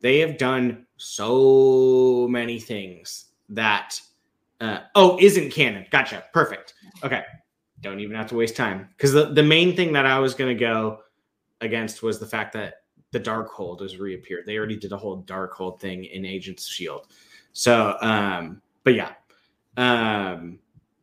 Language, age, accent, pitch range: English, 30-49, American, 100-130 Hz